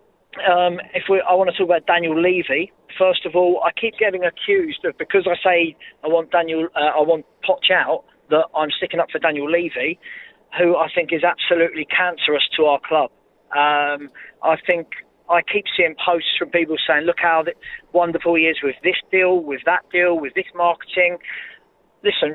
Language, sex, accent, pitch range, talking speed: English, male, British, 165-195 Hz, 185 wpm